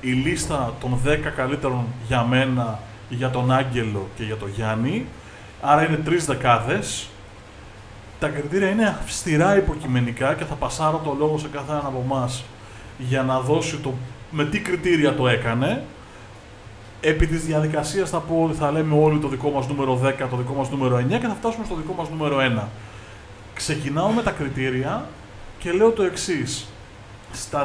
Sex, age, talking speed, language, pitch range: male, 30-49, 165 wpm, Greek, 115-165 Hz